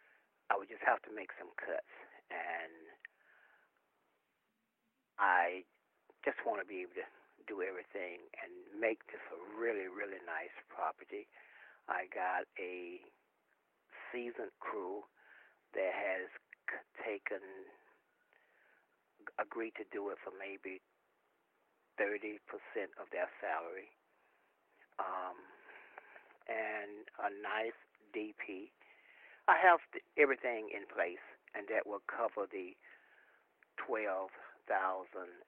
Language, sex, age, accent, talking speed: English, male, 60-79, American, 105 wpm